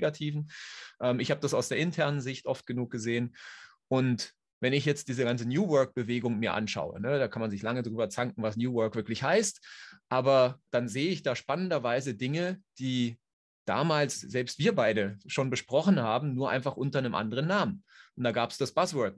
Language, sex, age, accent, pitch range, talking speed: German, male, 30-49, German, 120-150 Hz, 195 wpm